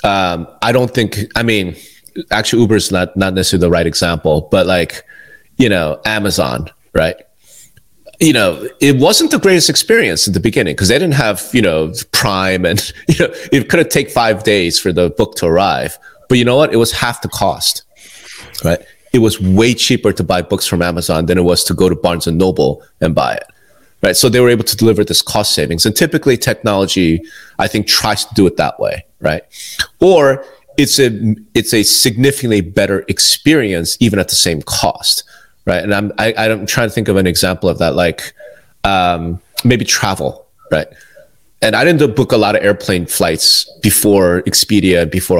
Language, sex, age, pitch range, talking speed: English, male, 30-49, 95-125 Hz, 195 wpm